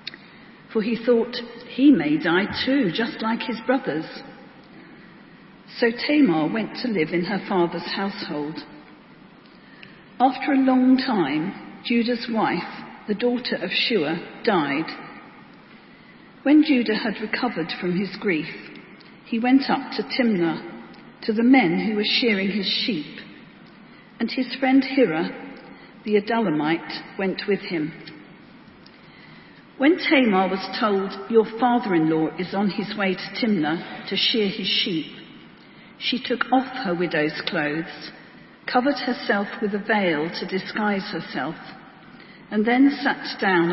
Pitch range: 190-245 Hz